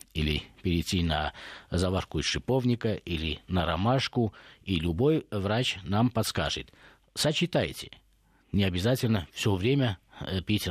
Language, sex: Russian, male